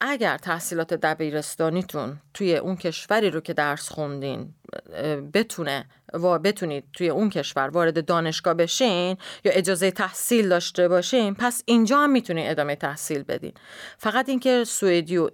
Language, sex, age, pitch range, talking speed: Swedish, female, 30-49, 160-215 Hz, 135 wpm